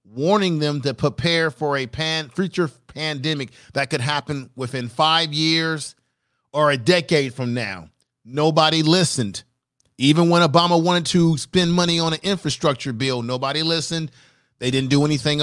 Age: 40-59